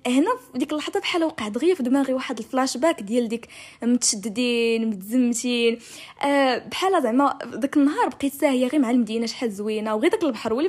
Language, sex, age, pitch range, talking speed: English, female, 10-29, 225-280 Hz, 175 wpm